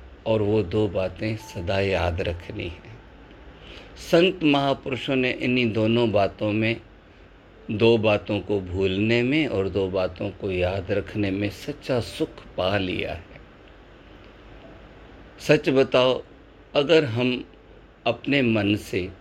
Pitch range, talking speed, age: 95-120 Hz, 120 wpm, 50-69